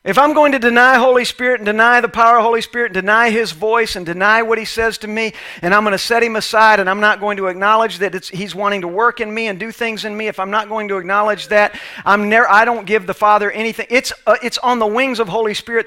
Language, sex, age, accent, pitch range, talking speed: English, male, 40-59, American, 190-245 Hz, 285 wpm